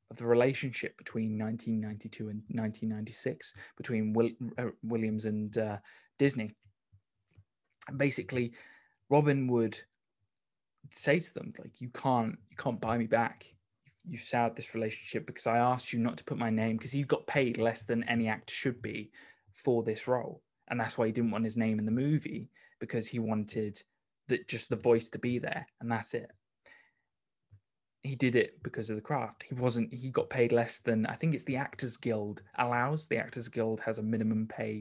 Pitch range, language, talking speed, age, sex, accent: 105-120 Hz, English, 185 wpm, 20-39, male, British